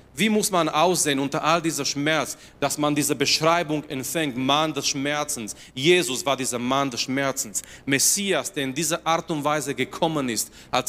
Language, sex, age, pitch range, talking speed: German, male, 30-49, 120-155 Hz, 175 wpm